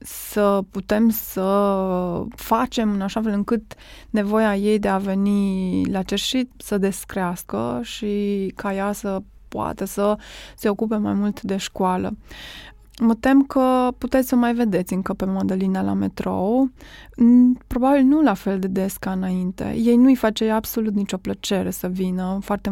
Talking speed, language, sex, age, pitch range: 155 wpm, Romanian, female, 20-39, 195-225 Hz